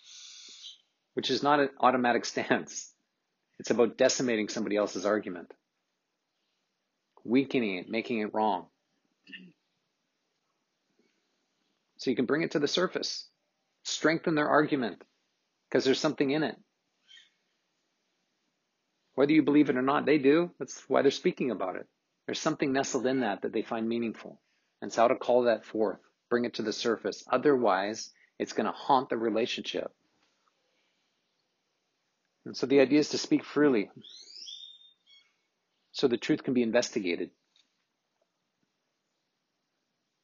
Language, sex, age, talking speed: English, male, 40-59, 130 wpm